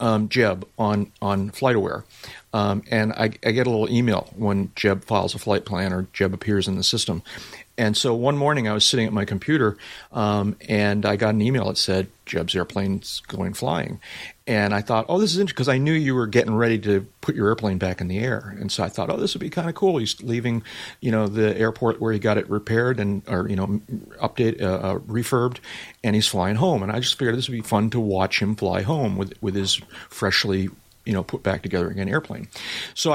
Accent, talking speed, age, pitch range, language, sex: American, 230 wpm, 40-59, 105-125 Hz, English, male